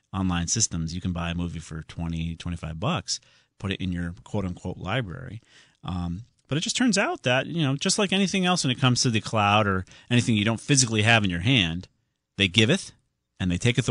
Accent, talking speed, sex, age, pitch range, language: American, 220 wpm, male, 40-59, 90-125 Hz, English